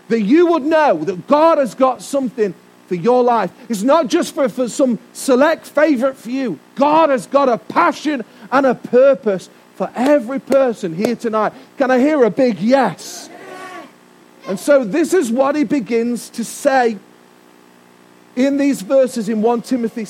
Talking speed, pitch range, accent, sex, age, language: 165 wpm, 205-275 Hz, British, male, 40-59, English